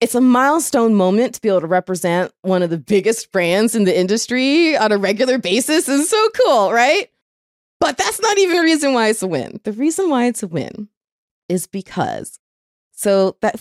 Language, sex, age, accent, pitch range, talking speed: English, female, 30-49, American, 175-235 Hz, 205 wpm